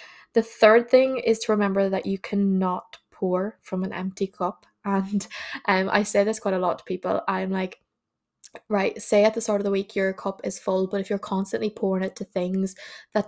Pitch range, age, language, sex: 190-205 Hz, 10-29, English, female